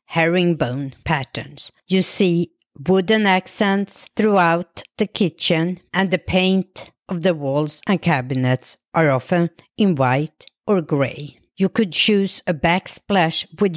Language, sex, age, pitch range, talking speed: English, female, 50-69, 145-195 Hz, 125 wpm